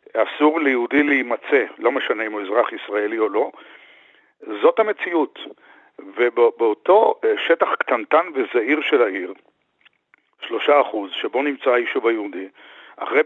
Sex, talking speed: male, 115 wpm